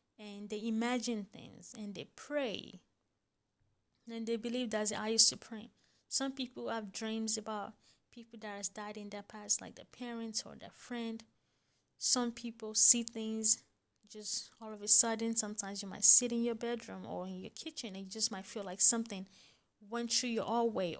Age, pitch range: 20-39, 200-235 Hz